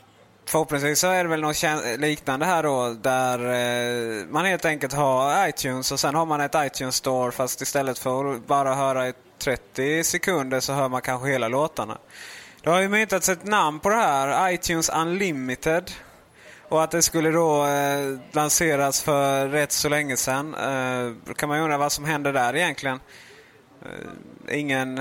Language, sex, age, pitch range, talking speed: Swedish, male, 20-39, 130-160 Hz, 170 wpm